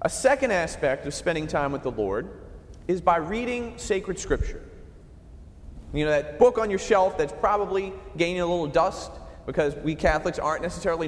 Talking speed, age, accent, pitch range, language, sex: 175 wpm, 30-49, American, 150-230 Hz, English, male